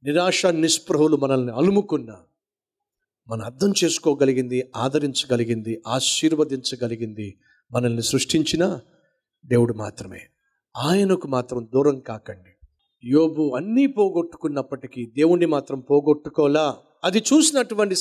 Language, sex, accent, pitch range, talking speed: Telugu, male, native, 130-200 Hz, 85 wpm